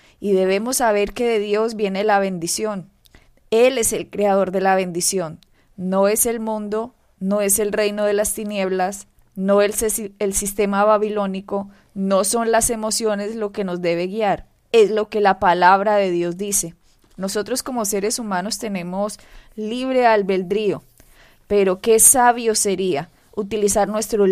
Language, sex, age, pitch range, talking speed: Spanish, female, 20-39, 190-220 Hz, 155 wpm